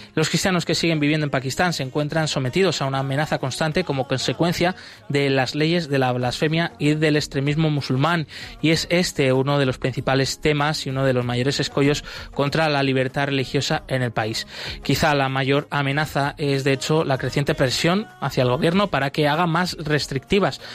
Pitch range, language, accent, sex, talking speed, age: 130-155 Hz, Spanish, Spanish, male, 190 wpm, 20-39